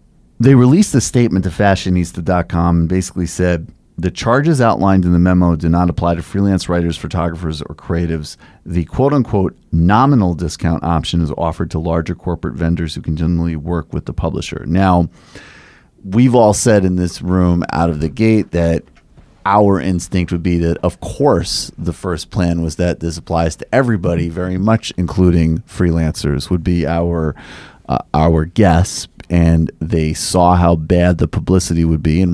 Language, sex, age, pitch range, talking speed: English, male, 30-49, 80-95 Hz, 165 wpm